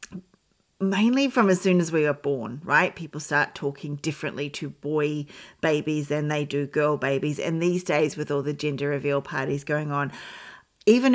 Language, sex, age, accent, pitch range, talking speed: English, female, 40-59, Australian, 150-195 Hz, 180 wpm